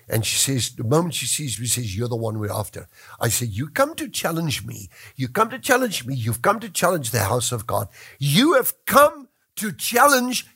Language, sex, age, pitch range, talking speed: English, male, 60-79, 110-165 Hz, 225 wpm